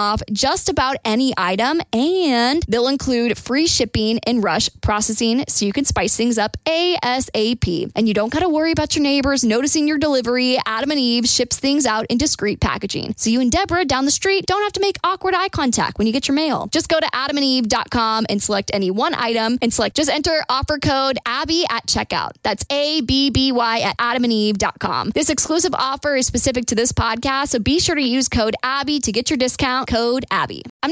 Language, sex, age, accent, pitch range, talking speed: English, female, 20-39, American, 220-300 Hz, 205 wpm